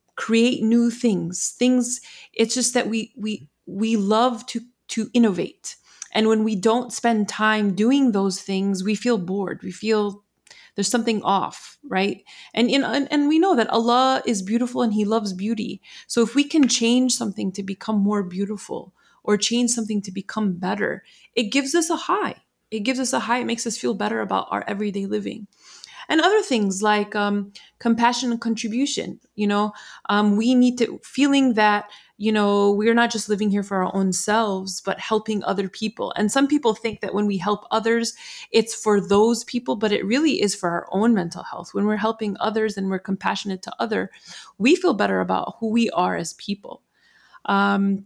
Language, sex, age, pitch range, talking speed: English, female, 30-49, 200-240 Hz, 190 wpm